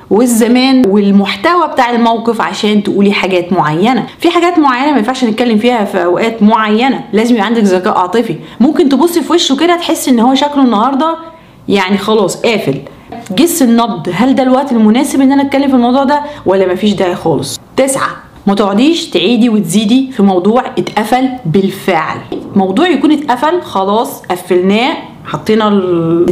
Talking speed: 155 wpm